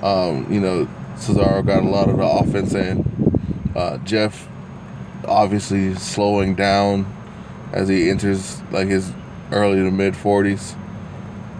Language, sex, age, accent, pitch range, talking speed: English, male, 20-39, American, 95-110 Hz, 125 wpm